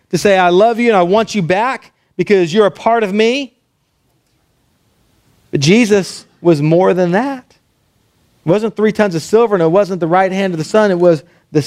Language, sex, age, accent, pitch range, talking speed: English, male, 40-59, American, 150-205 Hz, 205 wpm